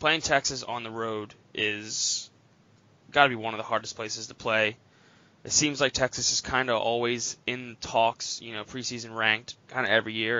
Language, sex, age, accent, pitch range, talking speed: English, male, 20-39, American, 110-125 Hz, 195 wpm